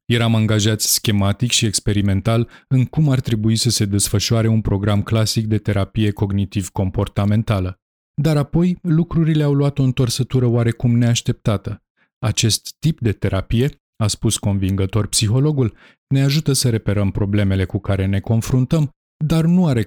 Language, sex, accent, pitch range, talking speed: Romanian, male, native, 105-130 Hz, 140 wpm